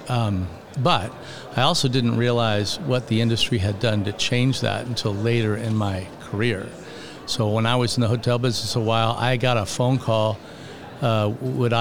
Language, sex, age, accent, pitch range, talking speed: English, male, 50-69, American, 115-135 Hz, 185 wpm